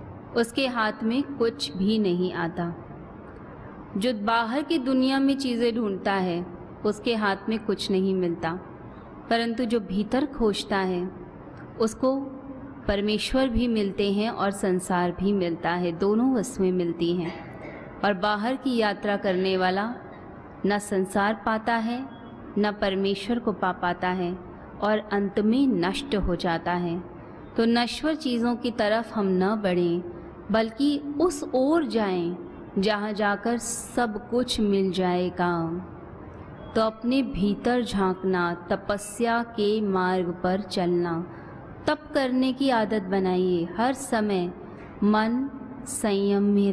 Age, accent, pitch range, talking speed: 30-49, native, 185-235 Hz, 130 wpm